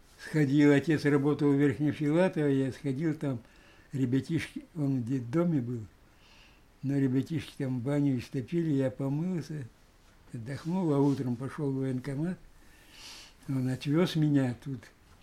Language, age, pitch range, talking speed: Russian, 60-79, 130-155 Hz, 125 wpm